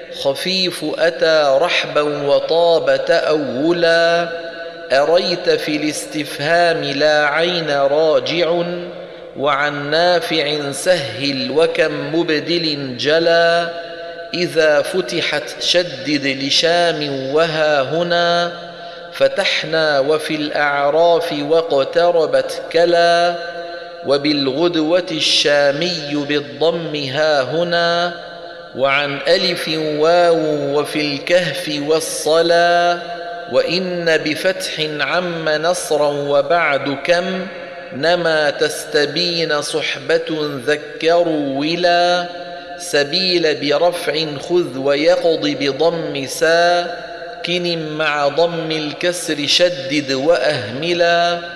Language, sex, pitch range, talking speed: Arabic, male, 150-170 Hz, 70 wpm